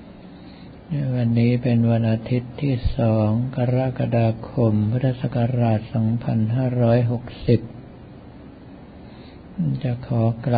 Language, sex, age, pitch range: Thai, male, 50-69, 110-125 Hz